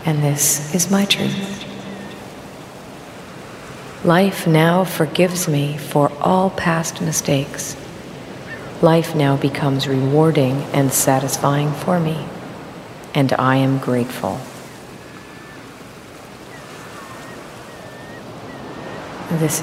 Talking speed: 80 wpm